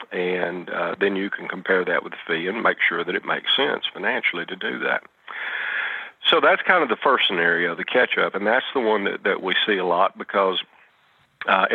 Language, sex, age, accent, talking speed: English, male, 50-69, American, 220 wpm